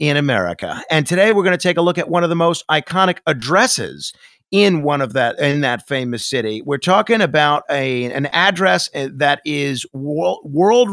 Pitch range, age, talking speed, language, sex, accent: 135-175 Hz, 40-59, 190 wpm, English, male, American